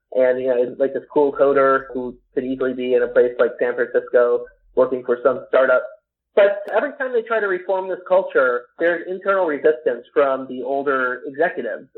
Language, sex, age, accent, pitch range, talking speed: English, male, 30-49, American, 130-180 Hz, 185 wpm